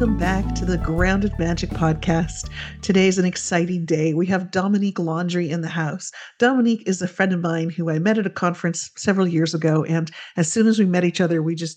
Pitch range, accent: 165-205 Hz, American